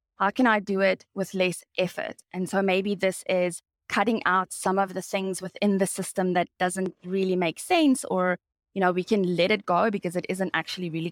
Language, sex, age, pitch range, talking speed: English, female, 20-39, 180-205 Hz, 215 wpm